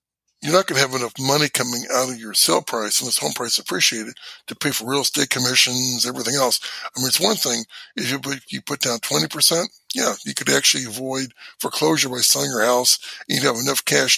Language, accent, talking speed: English, American, 215 wpm